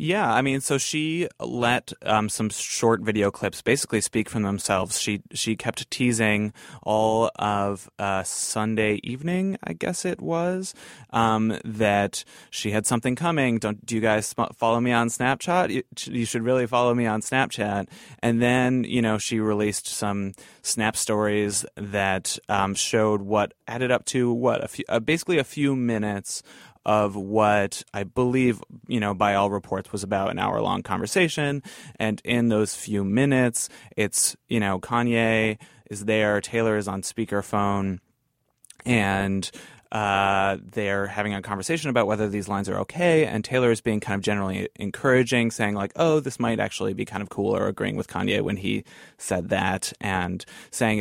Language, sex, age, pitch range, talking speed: English, male, 20-39, 100-125 Hz, 170 wpm